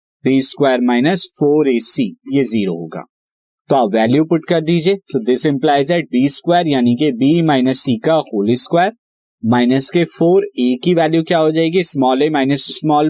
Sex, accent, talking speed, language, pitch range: male, native, 145 wpm, Hindi, 125-165 Hz